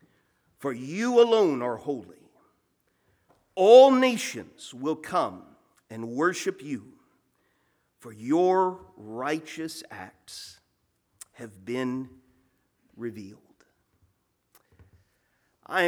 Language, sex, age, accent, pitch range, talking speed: English, male, 40-59, American, 120-150 Hz, 75 wpm